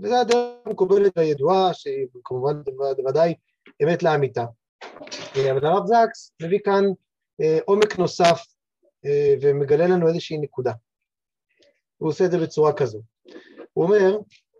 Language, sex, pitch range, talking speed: Hebrew, male, 160-220 Hz, 115 wpm